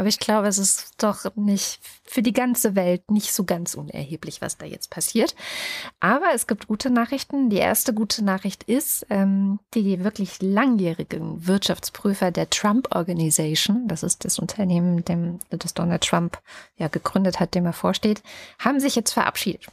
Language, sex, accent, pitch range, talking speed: German, female, German, 180-230 Hz, 165 wpm